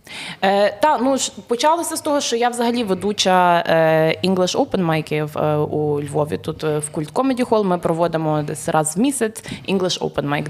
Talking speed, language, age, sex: 170 wpm, Ukrainian, 20-39, female